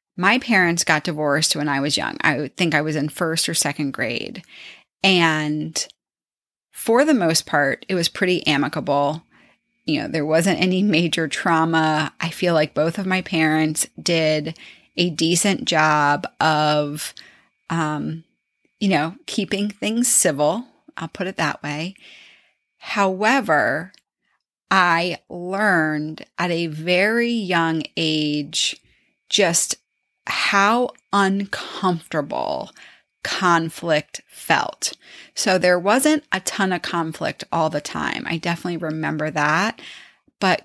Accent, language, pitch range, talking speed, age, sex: American, English, 155-190 Hz, 125 wpm, 30-49, female